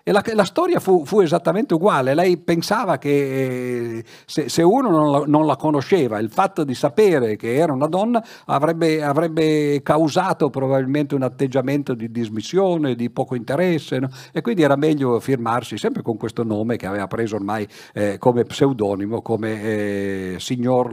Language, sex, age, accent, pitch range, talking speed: Italian, male, 50-69, native, 110-150 Hz, 160 wpm